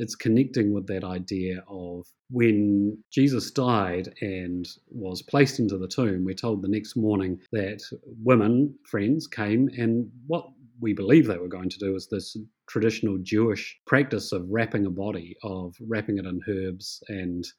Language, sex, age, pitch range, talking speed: English, male, 30-49, 95-115 Hz, 165 wpm